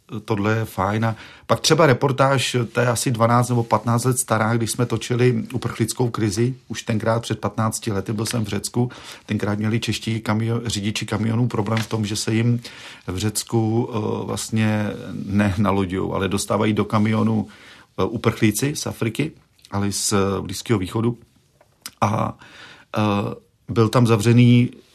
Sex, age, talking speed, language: male, 40-59, 150 wpm, Czech